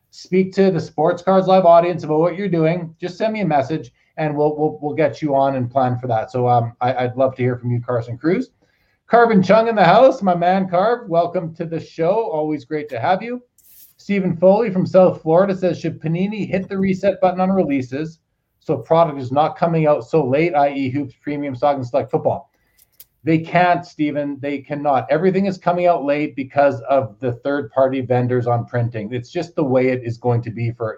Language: English